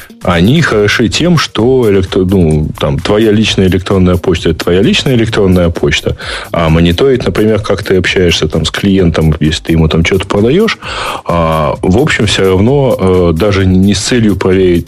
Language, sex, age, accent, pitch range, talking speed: Russian, male, 20-39, native, 85-100 Hz, 170 wpm